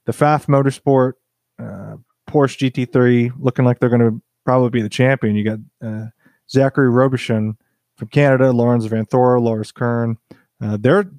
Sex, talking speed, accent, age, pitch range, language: male, 155 wpm, American, 30-49, 115-135 Hz, English